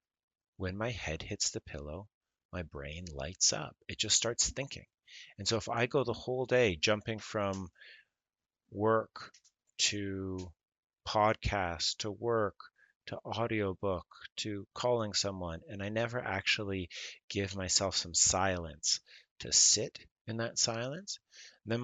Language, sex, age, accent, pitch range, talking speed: English, male, 30-49, American, 90-110 Hz, 130 wpm